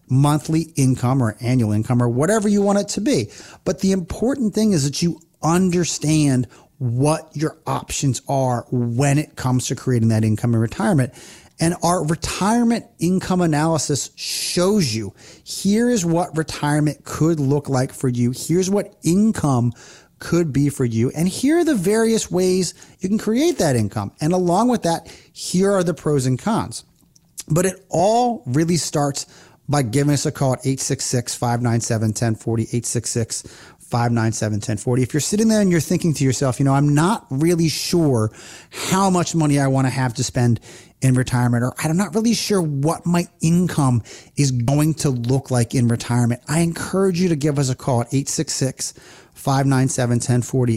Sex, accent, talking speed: male, American, 165 wpm